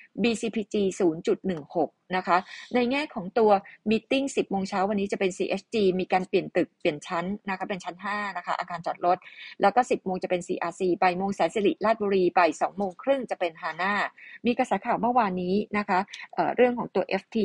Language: Thai